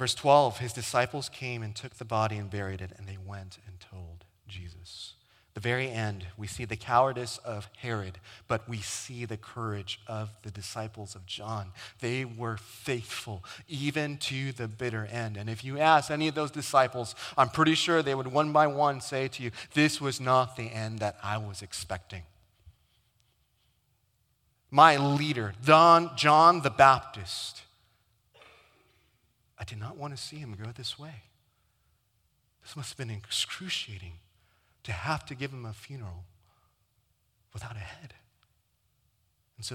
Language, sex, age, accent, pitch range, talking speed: English, male, 30-49, American, 100-125 Hz, 160 wpm